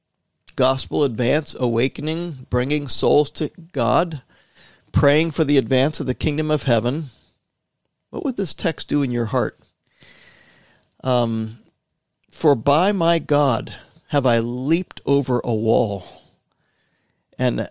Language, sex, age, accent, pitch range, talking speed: English, male, 50-69, American, 115-155 Hz, 120 wpm